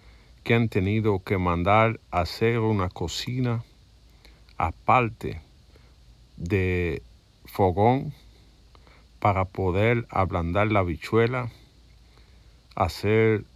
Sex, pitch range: male, 90-110 Hz